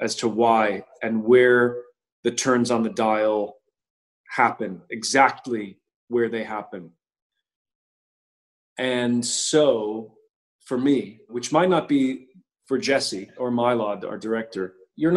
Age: 30-49